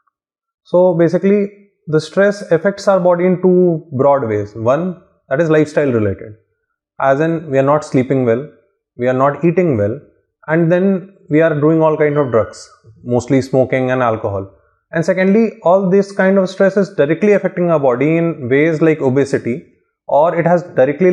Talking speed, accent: 175 wpm, Indian